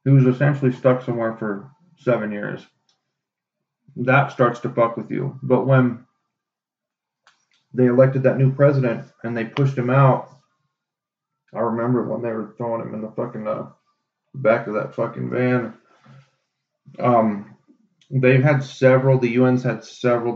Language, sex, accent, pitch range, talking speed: English, male, American, 115-135 Hz, 145 wpm